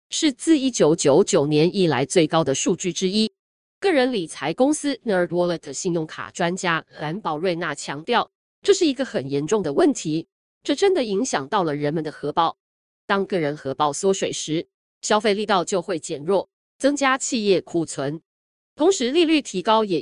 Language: Chinese